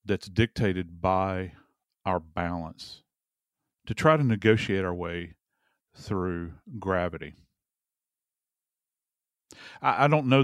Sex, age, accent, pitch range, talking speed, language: male, 40-59, American, 85-105 Hz, 100 wpm, English